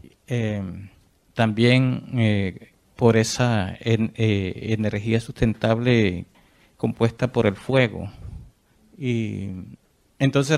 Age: 50-69